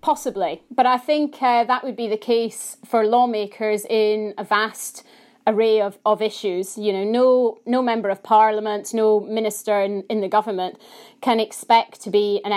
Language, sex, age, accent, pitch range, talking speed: English, female, 30-49, British, 205-235 Hz, 175 wpm